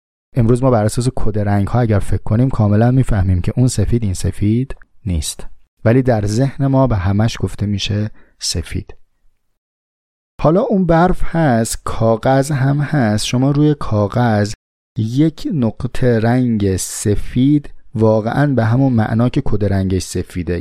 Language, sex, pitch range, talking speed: English, male, 95-130 Hz, 135 wpm